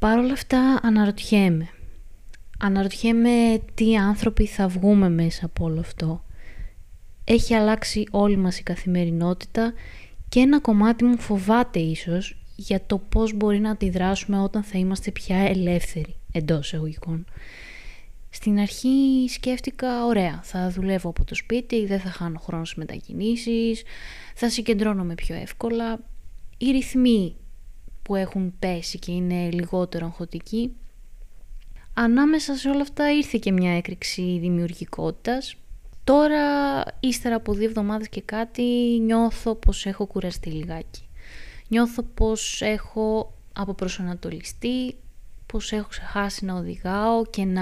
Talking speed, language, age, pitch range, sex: 120 wpm, Greek, 20-39, 175-230 Hz, female